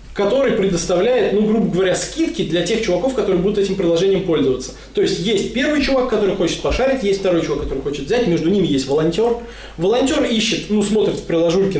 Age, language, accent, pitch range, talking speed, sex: 20-39, Russian, native, 150-220 Hz, 195 wpm, male